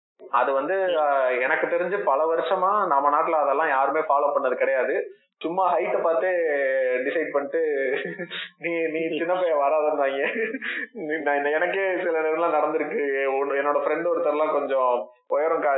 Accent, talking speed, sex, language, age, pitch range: native, 125 wpm, male, Tamil, 20-39, 150-250 Hz